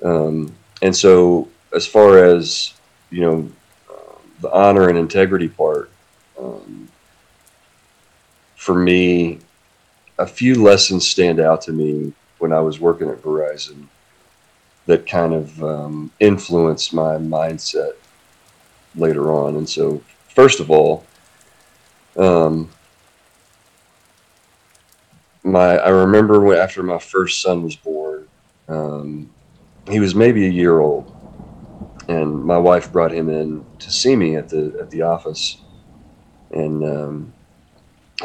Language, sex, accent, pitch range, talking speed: English, male, American, 80-100 Hz, 120 wpm